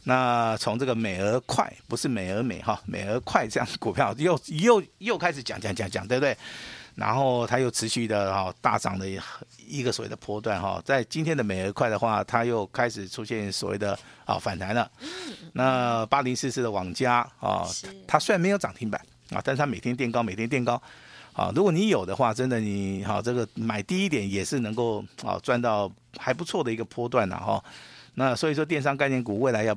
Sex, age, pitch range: male, 50-69, 105-135 Hz